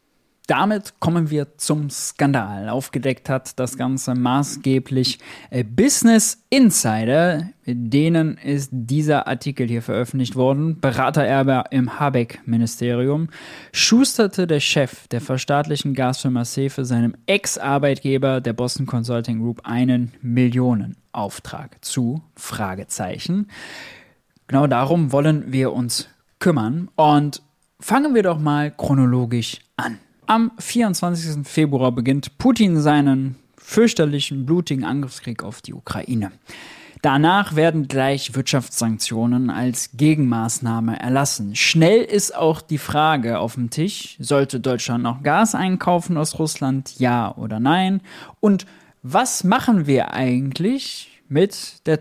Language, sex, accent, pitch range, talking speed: German, male, German, 125-160 Hz, 115 wpm